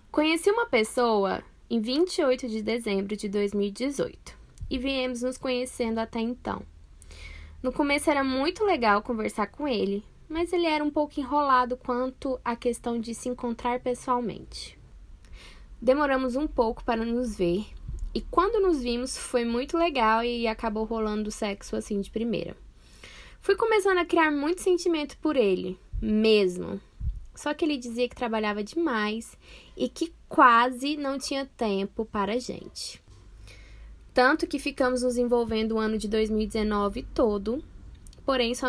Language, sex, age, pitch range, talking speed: Portuguese, female, 10-29, 215-260 Hz, 145 wpm